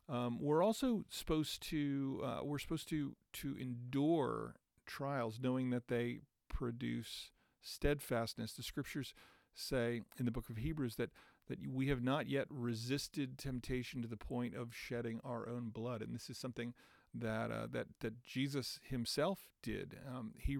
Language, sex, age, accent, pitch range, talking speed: English, male, 40-59, American, 115-140 Hz, 155 wpm